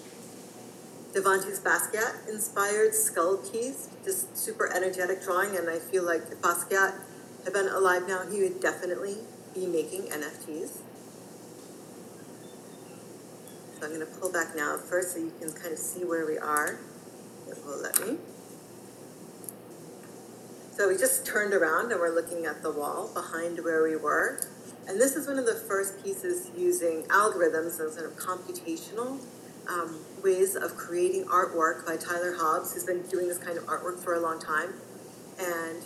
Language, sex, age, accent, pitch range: Chinese, female, 40-59, American, 170-200 Hz